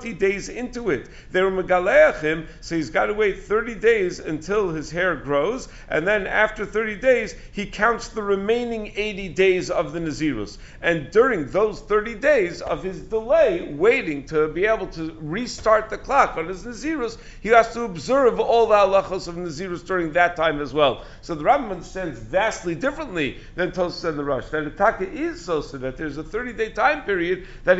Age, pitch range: 50-69, 165-225 Hz